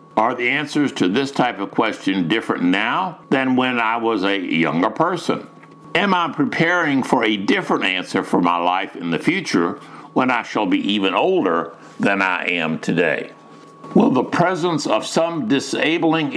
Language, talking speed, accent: English, 170 wpm, American